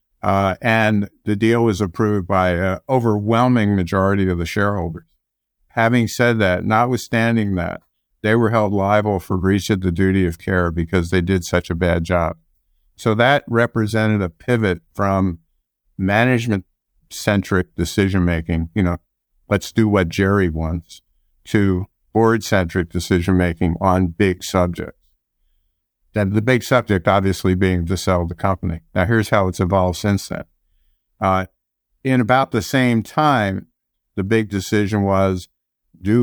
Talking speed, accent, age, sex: 140 wpm, American, 50-69, male